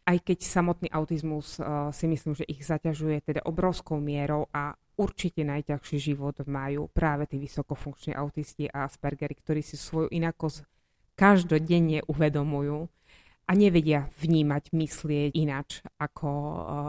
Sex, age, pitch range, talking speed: female, 20-39, 145-165 Hz, 130 wpm